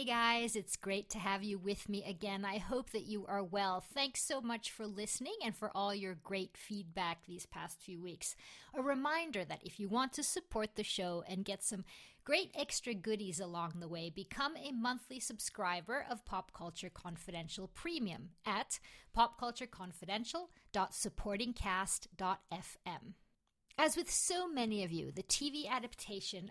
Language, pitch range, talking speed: English, 190-255 Hz, 160 wpm